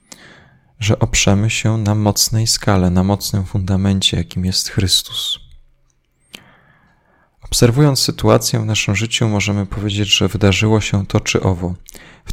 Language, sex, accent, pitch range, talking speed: Polish, male, native, 90-115 Hz, 125 wpm